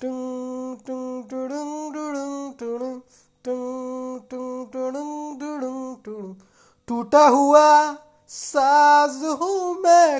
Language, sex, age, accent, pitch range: Hindi, male, 20-39, native, 230-310 Hz